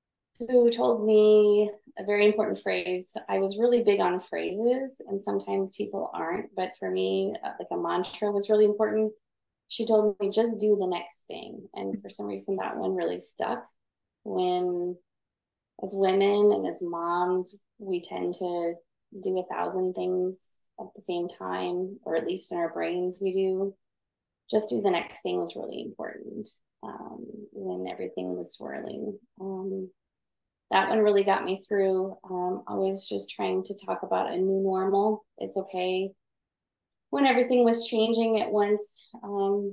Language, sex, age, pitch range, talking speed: English, female, 20-39, 175-210 Hz, 160 wpm